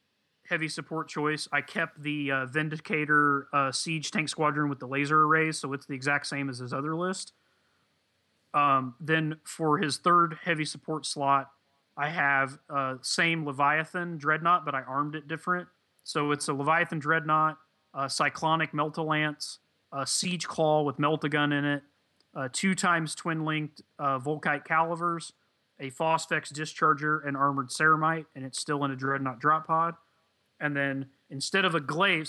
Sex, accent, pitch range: male, American, 135-160 Hz